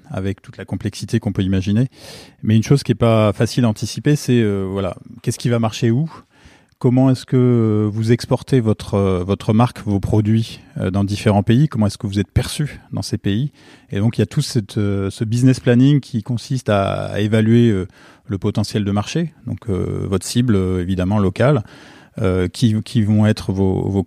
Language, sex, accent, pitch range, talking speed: French, male, French, 100-120 Hz, 200 wpm